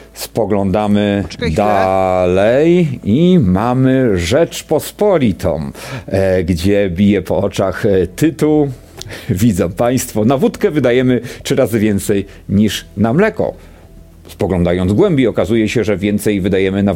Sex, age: male, 50-69